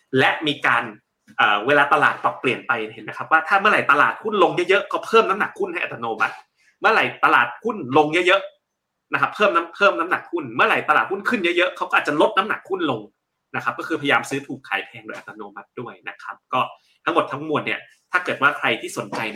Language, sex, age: Thai, male, 30-49